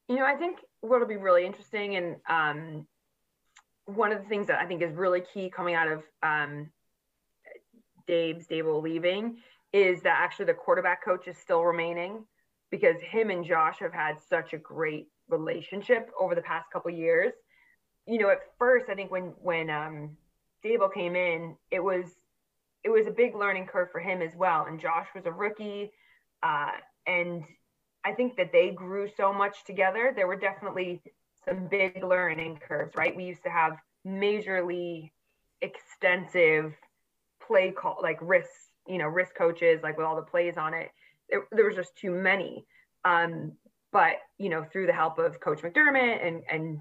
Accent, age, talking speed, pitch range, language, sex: American, 20-39, 175 wpm, 165-205 Hz, English, female